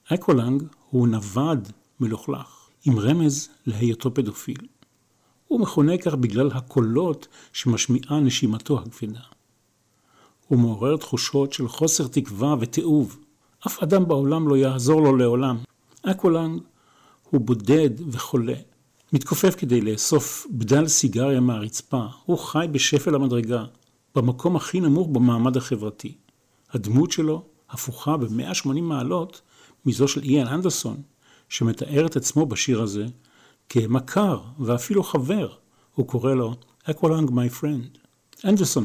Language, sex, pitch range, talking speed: Hebrew, male, 120-155 Hz, 115 wpm